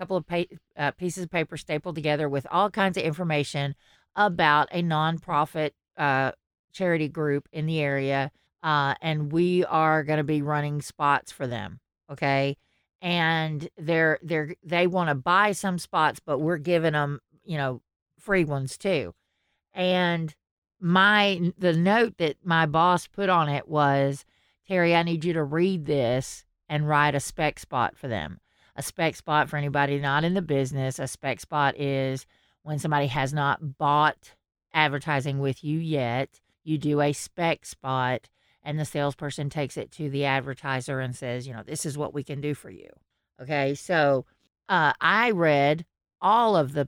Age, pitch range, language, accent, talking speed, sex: 40-59, 140-175 Hz, English, American, 170 wpm, female